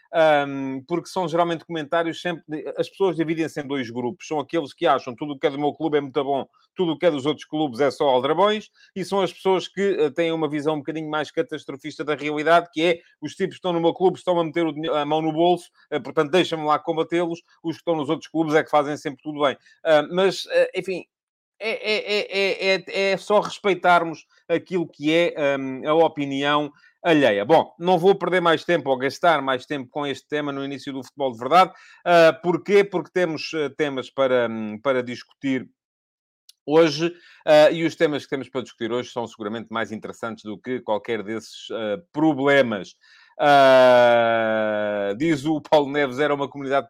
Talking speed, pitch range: 185 wpm, 135-170 Hz